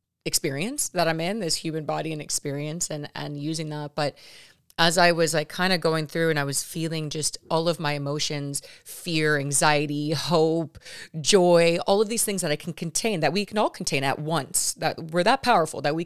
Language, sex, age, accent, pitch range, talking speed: English, female, 30-49, American, 150-185 Hz, 210 wpm